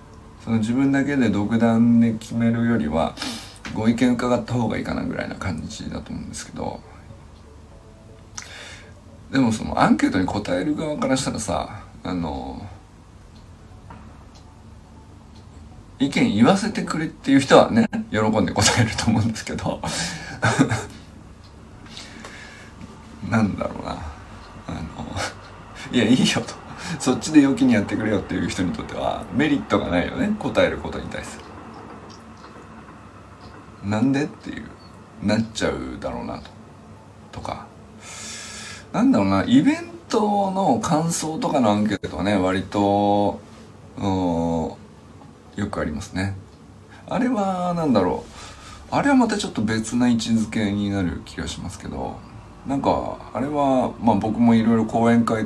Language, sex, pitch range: Japanese, male, 100-125 Hz